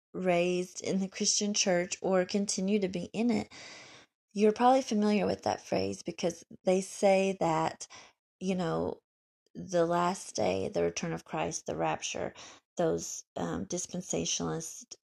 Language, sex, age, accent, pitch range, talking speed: English, female, 30-49, American, 165-200 Hz, 140 wpm